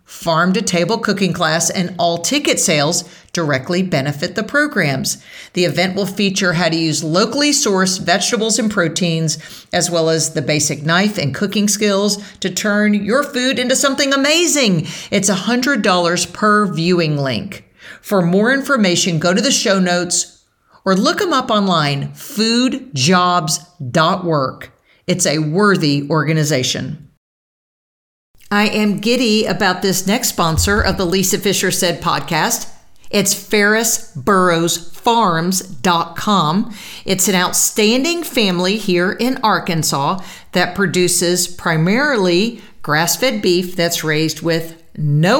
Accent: American